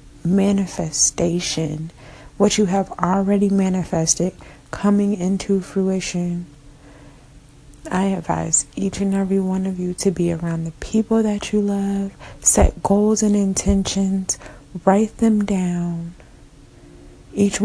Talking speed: 110 wpm